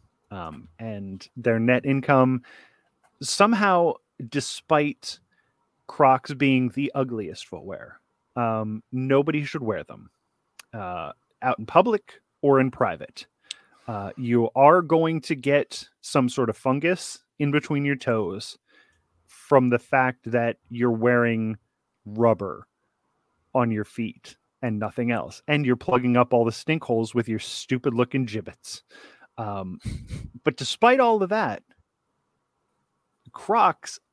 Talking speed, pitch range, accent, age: 125 wpm, 115-140 Hz, American, 30-49